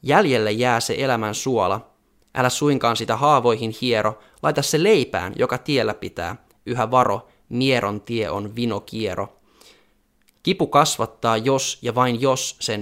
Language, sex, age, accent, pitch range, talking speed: Finnish, male, 20-39, native, 110-135 Hz, 135 wpm